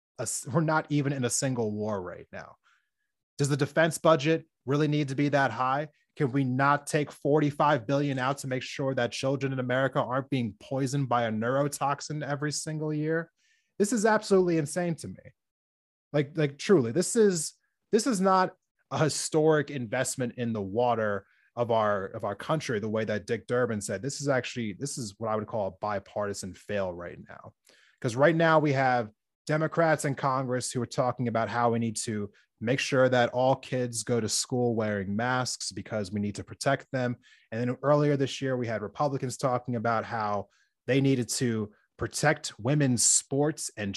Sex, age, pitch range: male, 20-39, 120-150 Hz